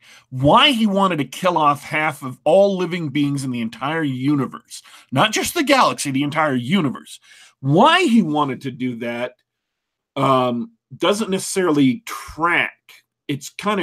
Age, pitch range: 40-59, 135-195 Hz